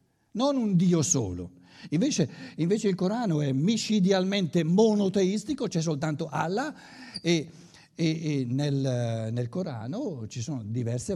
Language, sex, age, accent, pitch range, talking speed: Italian, male, 60-79, native, 130-205 Hz, 130 wpm